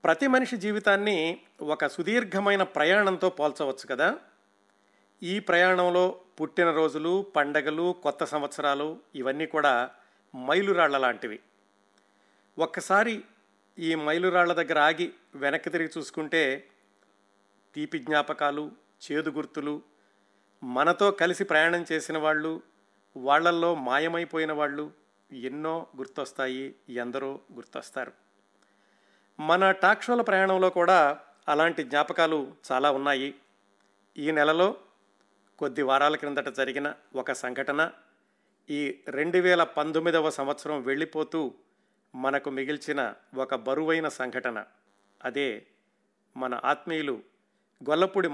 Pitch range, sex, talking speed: 130-170 Hz, male, 90 wpm